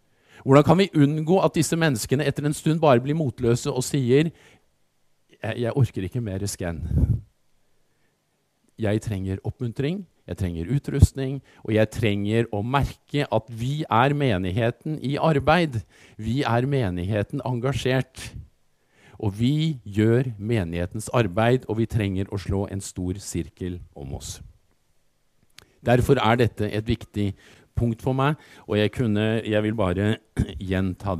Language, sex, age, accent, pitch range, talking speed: Danish, male, 50-69, Norwegian, 105-145 Hz, 140 wpm